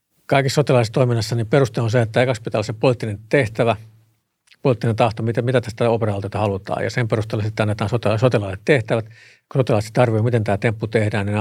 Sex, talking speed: male, 185 wpm